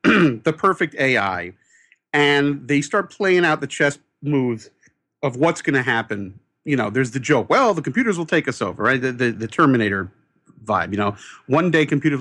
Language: English